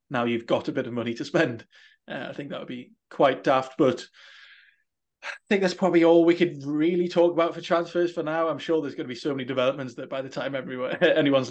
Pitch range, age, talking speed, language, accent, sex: 130-155 Hz, 20-39, 240 wpm, English, British, male